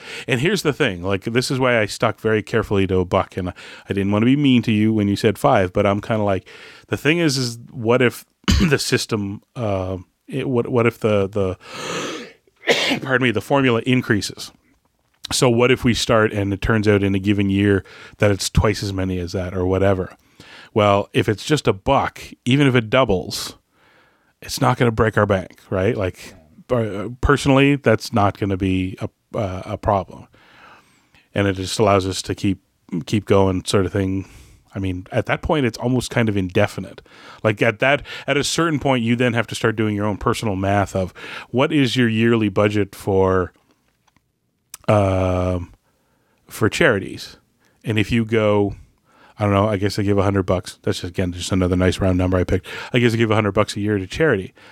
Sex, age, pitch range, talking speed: male, 30-49, 100-125 Hz, 205 wpm